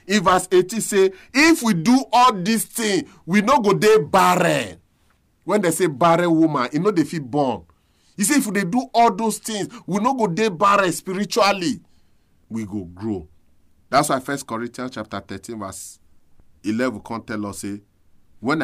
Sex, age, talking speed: male, 40-59, 180 wpm